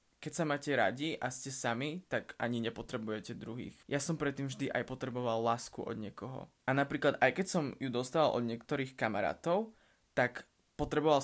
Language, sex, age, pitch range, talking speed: Slovak, male, 20-39, 120-150 Hz, 170 wpm